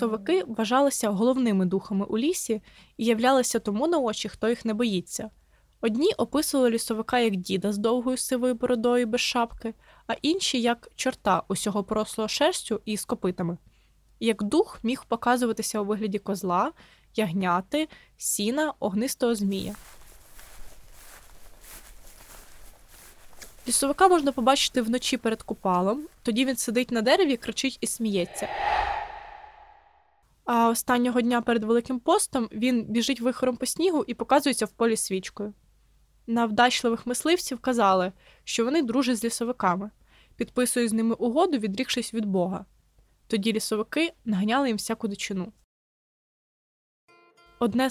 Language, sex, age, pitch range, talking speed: Ukrainian, female, 20-39, 215-260 Hz, 125 wpm